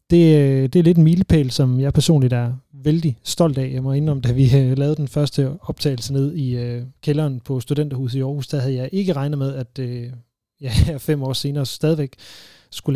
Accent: native